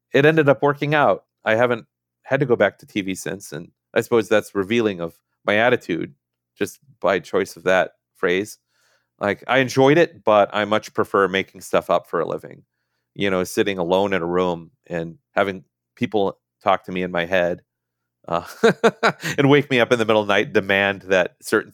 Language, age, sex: English, 40-59, male